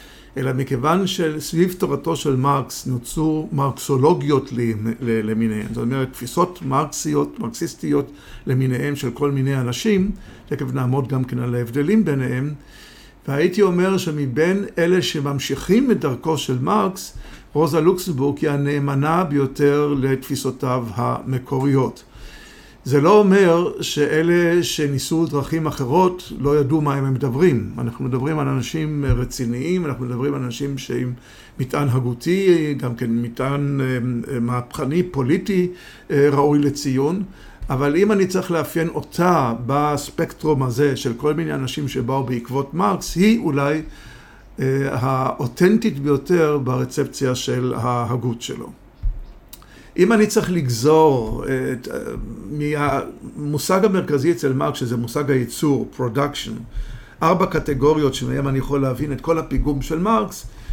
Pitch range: 130-160 Hz